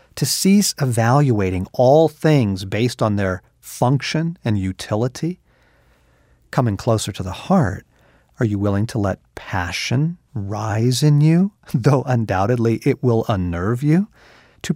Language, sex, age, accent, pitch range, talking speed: English, male, 50-69, American, 105-155 Hz, 130 wpm